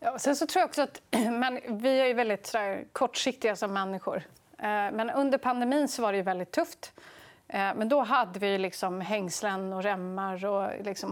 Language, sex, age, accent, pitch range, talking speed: Swedish, female, 30-49, native, 195-270 Hz, 155 wpm